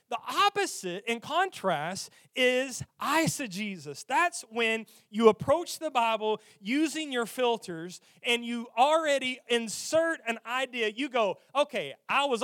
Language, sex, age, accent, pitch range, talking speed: English, male, 30-49, American, 195-275 Hz, 125 wpm